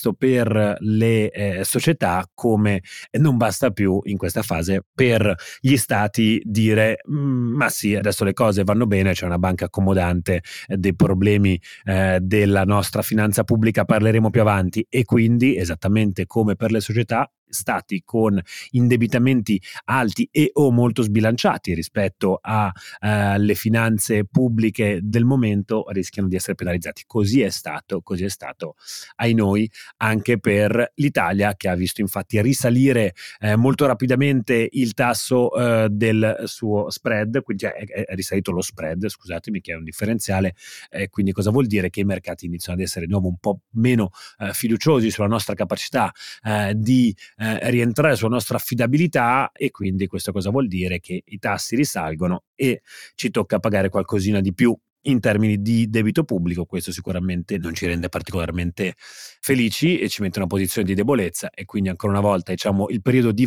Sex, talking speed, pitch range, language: male, 160 wpm, 95-115 Hz, Italian